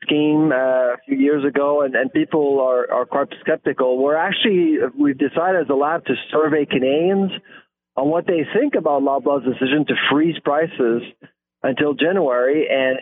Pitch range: 135-175 Hz